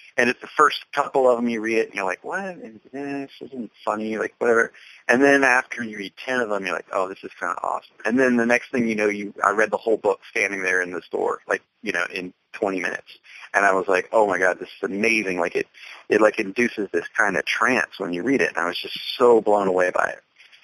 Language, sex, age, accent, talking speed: English, male, 30-49, American, 270 wpm